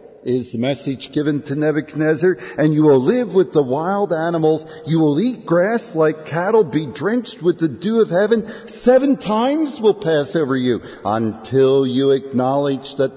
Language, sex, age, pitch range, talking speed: English, male, 50-69, 135-185 Hz, 170 wpm